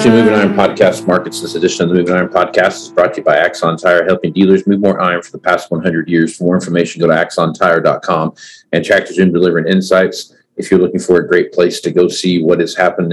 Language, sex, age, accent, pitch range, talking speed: English, male, 40-59, American, 85-95 Hz, 240 wpm